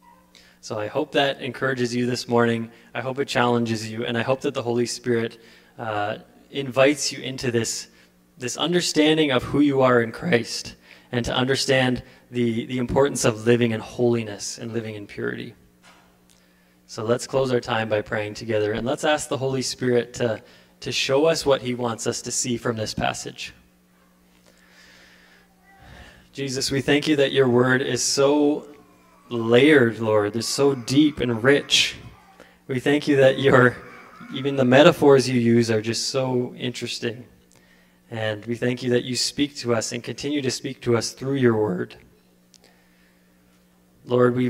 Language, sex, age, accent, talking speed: English, male, 20-39, American, 165 wpm